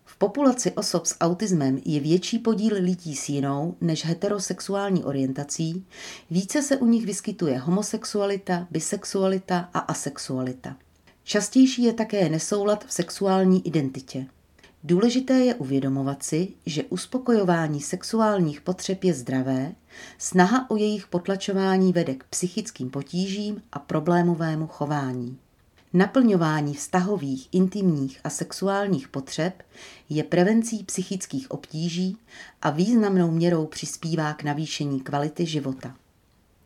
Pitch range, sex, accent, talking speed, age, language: 150-200 Hz, female, native, 110 wpm, 40-59, Czech